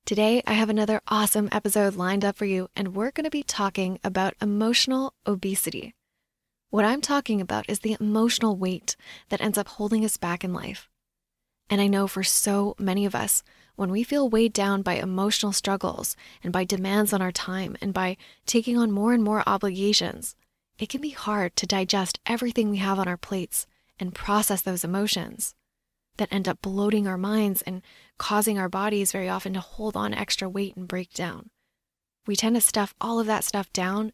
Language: English